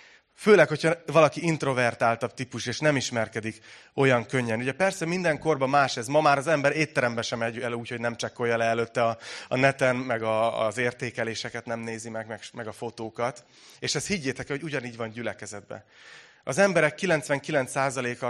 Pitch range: 120-150 Hz